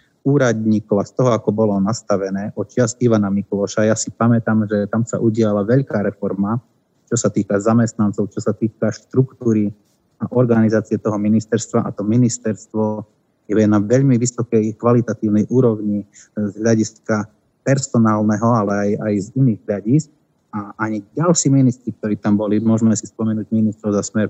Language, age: Slovak, 30-49